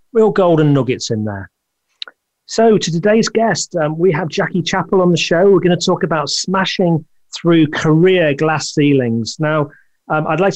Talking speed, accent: 175 wpm, British